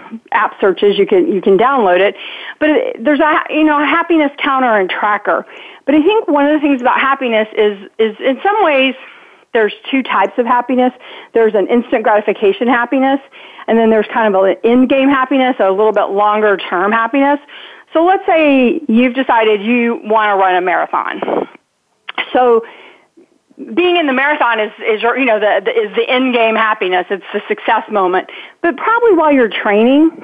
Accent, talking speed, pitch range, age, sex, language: American, 185 wpm, 215-310 Hz, 40-59, female, English